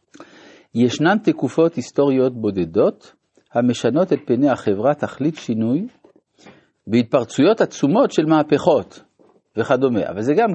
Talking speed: 100 wpm